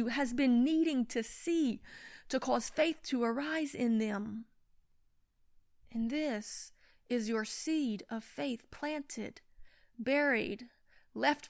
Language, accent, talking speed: English, American, 115 wpm